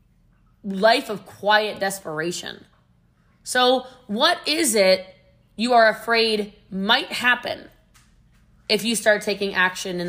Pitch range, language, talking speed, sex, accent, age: 175-225 Hz, English, 115 wpm, female, American, 20-39